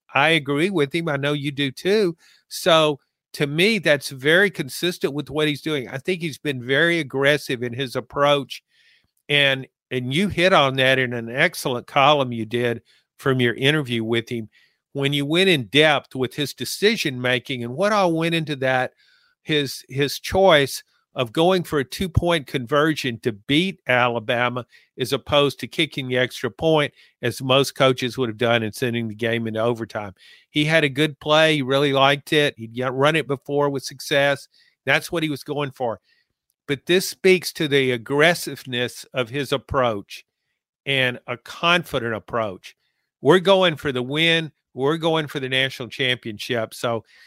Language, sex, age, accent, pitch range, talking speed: English, male, 50-69, American, 125-155 Hz, 175 wpm